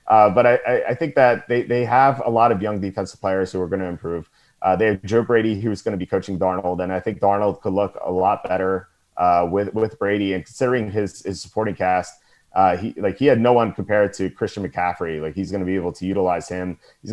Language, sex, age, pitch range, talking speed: English, male, 30-49, 90-115 Hz, 250 wpm